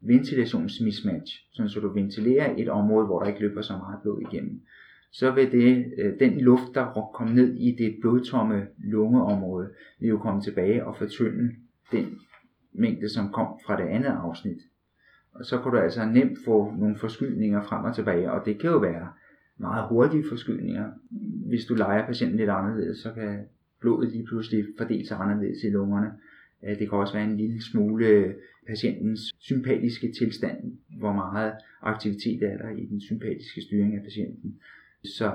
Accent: native